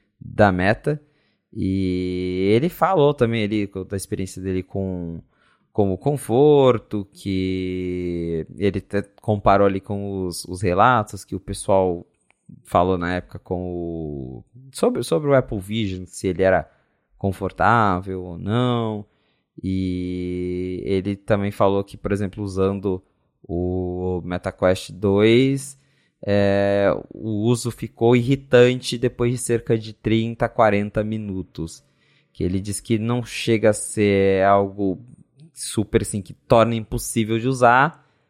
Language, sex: Portuguese, male